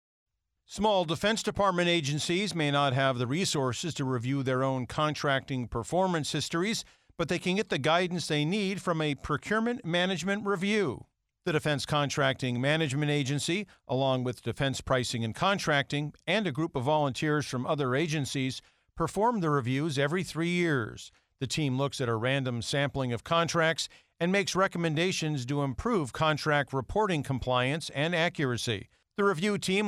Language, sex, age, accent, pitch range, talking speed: English, male, 50-69, American, 130-170 Hz, 155 wpm